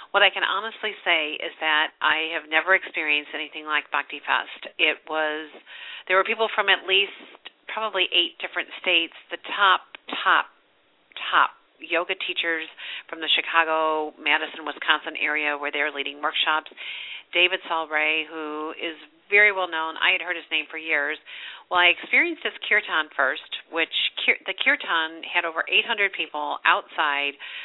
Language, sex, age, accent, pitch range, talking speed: English, female, 50-69, American, 150-175 Hz, 155 wpm